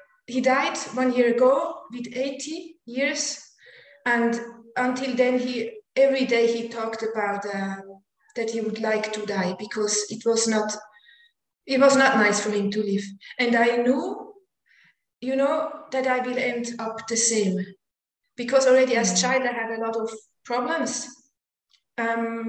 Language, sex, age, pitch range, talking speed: English, female, 30-49, 225-265 Hz, 160 wpm